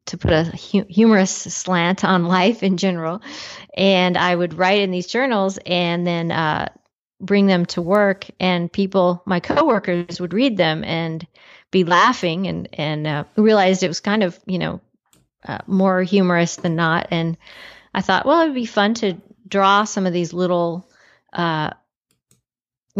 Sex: female